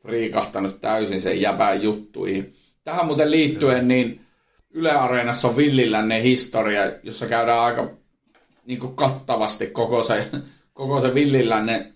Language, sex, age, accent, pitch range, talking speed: Finnish, male, 30-49, native, 115-135 Hz, 115 wpm